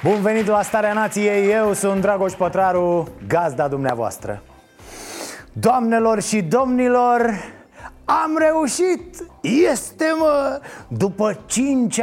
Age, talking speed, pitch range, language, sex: 30-49, 100 wpm, 145-200 Hz, Romanian, male